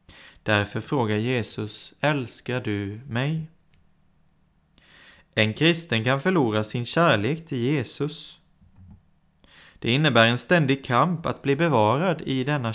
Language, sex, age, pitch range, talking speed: Swedish, male, 30-49, 110-150 Hz, 115 wpm